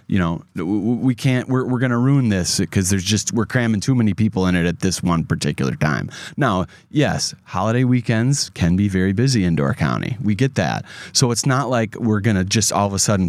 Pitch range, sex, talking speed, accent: 95-130 Hz, male, 230 wpm, American